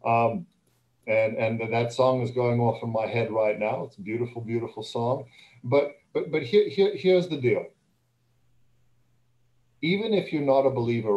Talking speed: 170 wpm